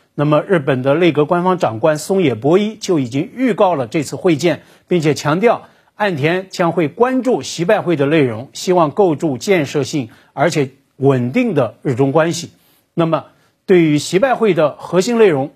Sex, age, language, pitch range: male, 50-69, Chinese, 145-205 Hz